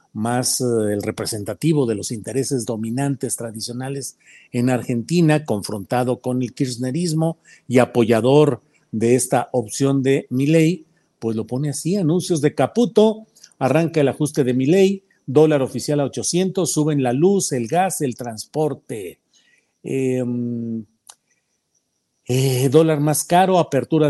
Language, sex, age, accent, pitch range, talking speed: Spanish, male, 50-69, Mexican, 120-155 Hz, 125 wpm